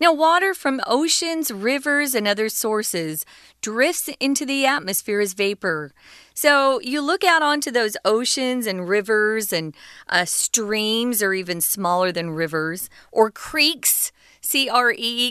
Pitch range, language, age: 180-270 Hz, Chinese, 40-59